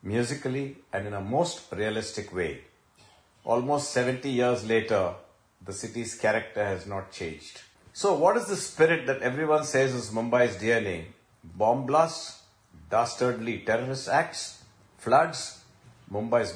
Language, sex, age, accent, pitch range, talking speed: English, male, 50-69, Indian, 100-135 Hz, 125 wpm